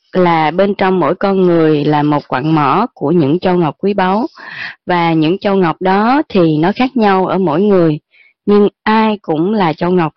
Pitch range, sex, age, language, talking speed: 165-225 Hz, female, 20-39, Vietnamese, 200 wpm